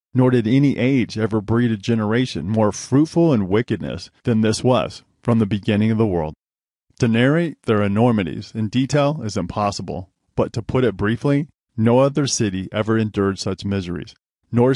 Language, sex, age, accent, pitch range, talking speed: English, male, 40-59, American, 100-125 Hz, 170 wpm